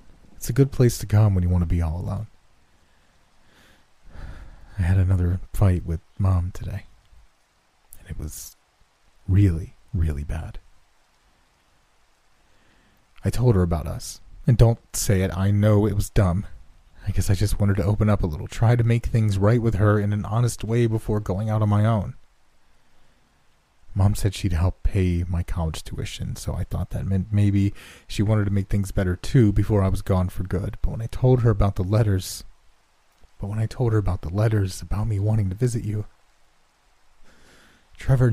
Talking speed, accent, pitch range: 185 wpm, American, 90-110 Hz